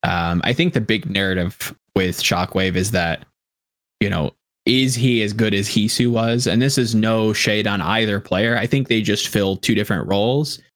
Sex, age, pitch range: male, 20-39, 105-135 Hz